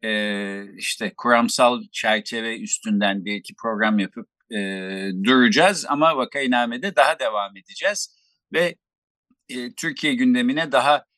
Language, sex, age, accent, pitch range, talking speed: Turkish, male, 50-69, native, 120-200 Hz, 115 wpm